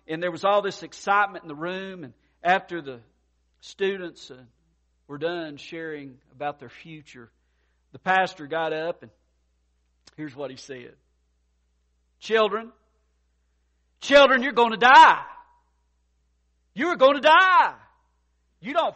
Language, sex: English, male